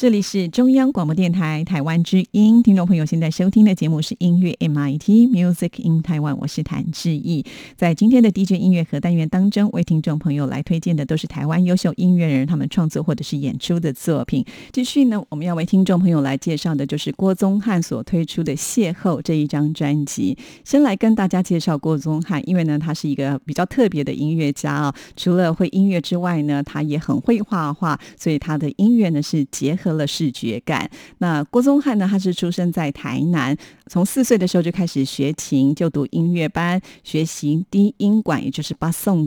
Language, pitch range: Chinese, 150-190 Hz